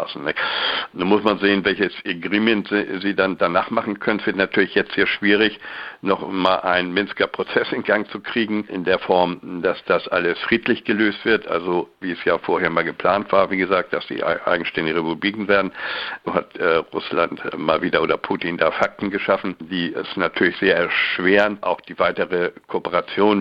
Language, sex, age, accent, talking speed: German, male, 60-79, German, 175 wpm